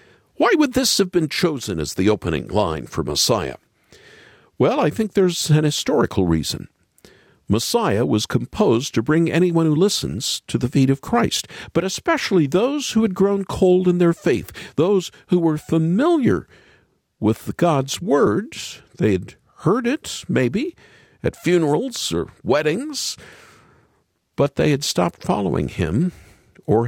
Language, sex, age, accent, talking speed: English, male, 50-69, American, 145 wpm